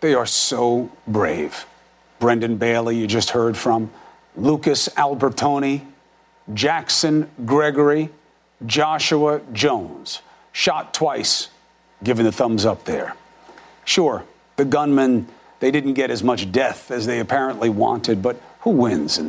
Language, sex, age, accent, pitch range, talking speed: English, male, 40-59, American, 125-170 Hz, 125 wpm